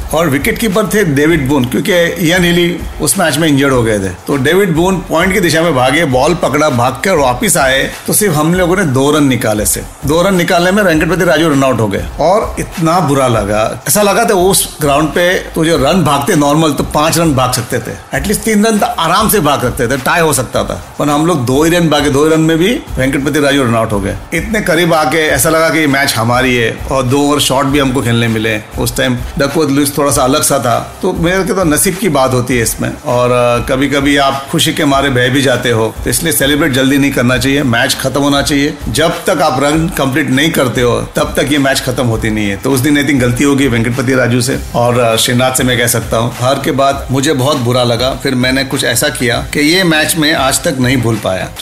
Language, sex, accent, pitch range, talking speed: Hindi, male, native, 125-165 Hz, 180 wpm